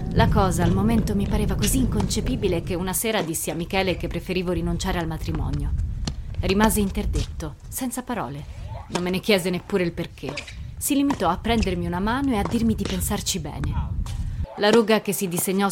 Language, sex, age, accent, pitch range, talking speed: Italian, female, 20-39, native, 160-205 Hz, 180 wpm